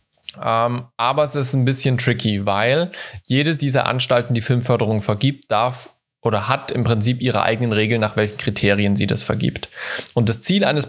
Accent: German